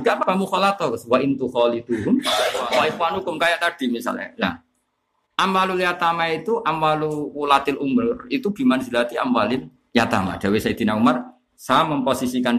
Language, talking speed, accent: Indonesian, 75 wpm, native